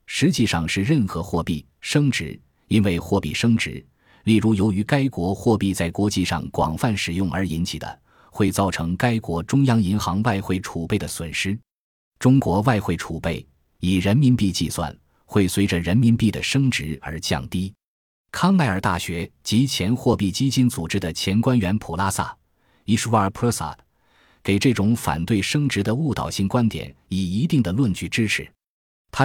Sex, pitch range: male, 85-115 Hz